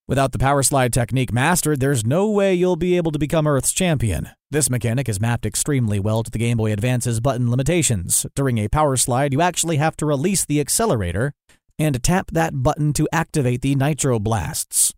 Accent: American